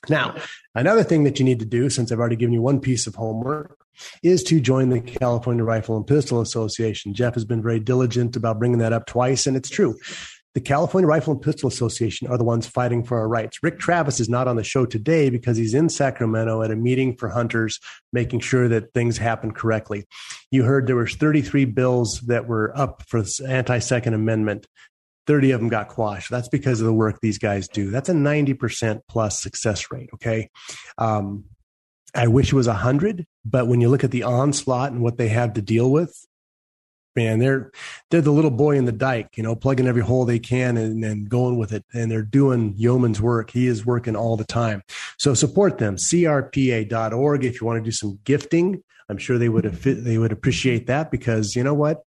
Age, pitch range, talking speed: 30-49, 110-135 Hz, 210 wpm